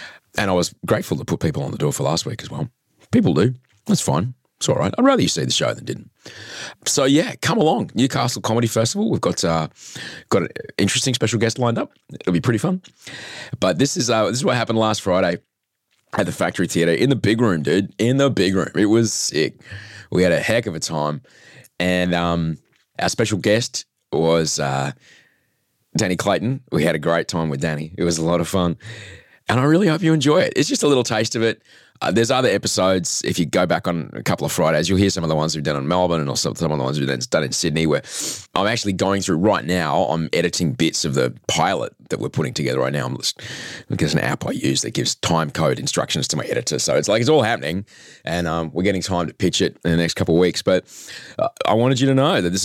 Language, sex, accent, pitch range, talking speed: English, male, Australian, 85-115 Hz, 245 wpm